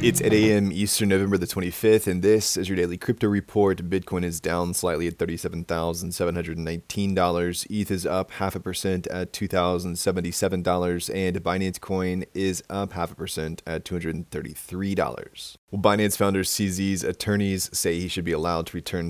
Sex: male